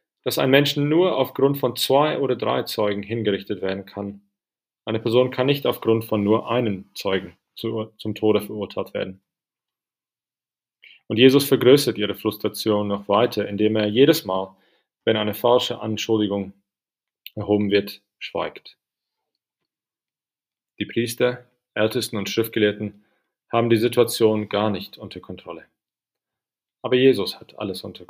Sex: male